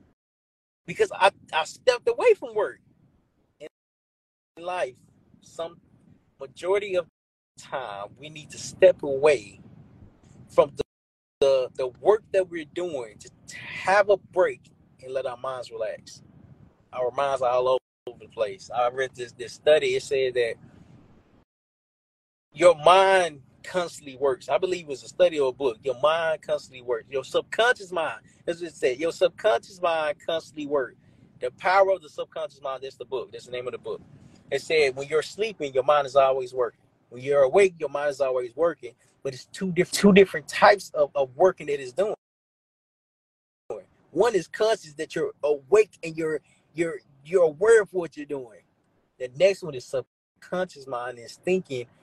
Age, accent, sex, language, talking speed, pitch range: 20-39, American, male, English, 170 wpm, 140-215 Hz